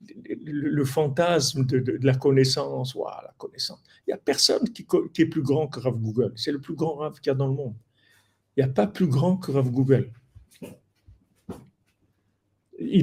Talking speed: 205 wpm